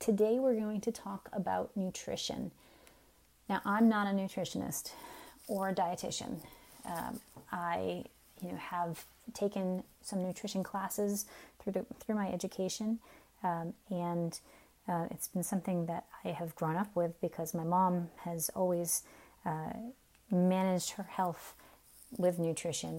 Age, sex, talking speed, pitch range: 30-49, female, 135 wpm, 170-200 Hz